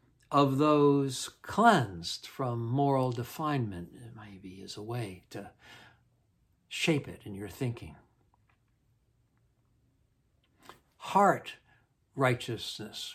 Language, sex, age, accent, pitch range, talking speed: English, male, 60-79, American, 115-150 Hz, 80 wpm